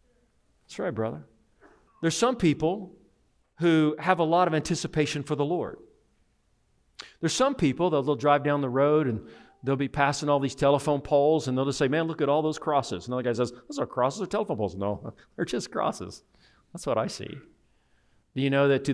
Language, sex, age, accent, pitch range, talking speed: English, male, 40-59, American, 125-165 Hz, 210 wpm